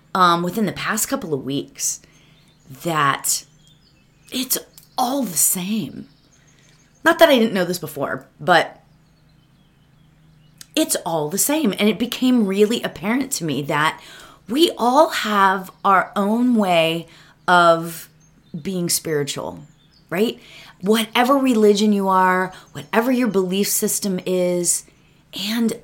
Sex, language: female, English